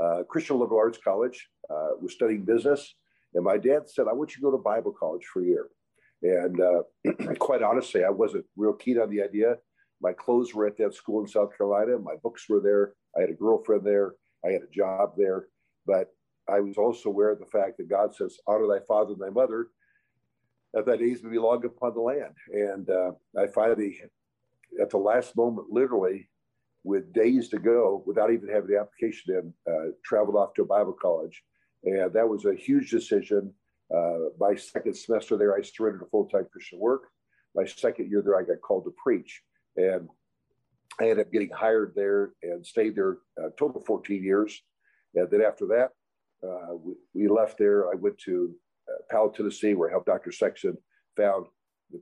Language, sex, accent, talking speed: English, male, American, 200 wpm